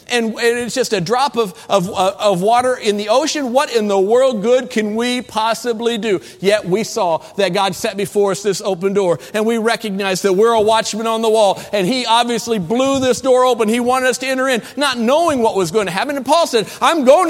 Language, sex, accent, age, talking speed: English, male, American, 50-69, 230 wpm